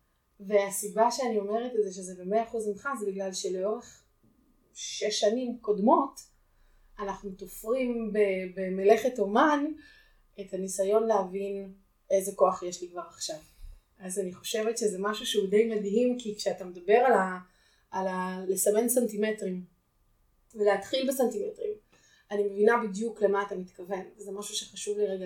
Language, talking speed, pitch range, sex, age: Hebrew, 135 wpm, 190-225 Hz, female, 20-39